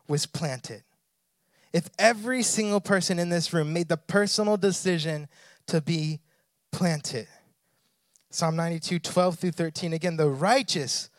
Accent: American